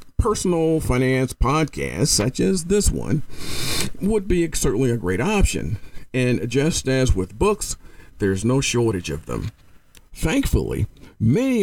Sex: male